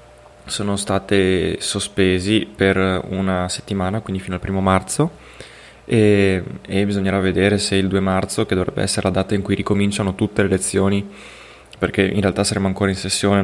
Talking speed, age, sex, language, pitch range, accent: 165 wpm, 20-39, male, Italian, 95-105 Hz, native